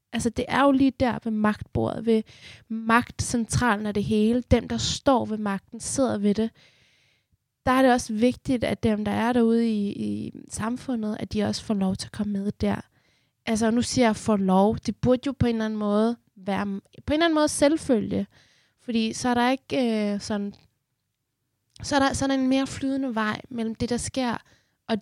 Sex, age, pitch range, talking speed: female, 20-39, 190-240 Hz, 210 wpm